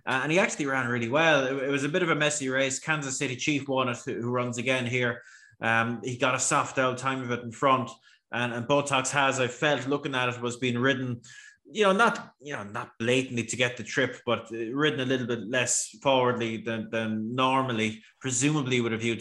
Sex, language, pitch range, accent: male, English, 115-130 Hz, Irish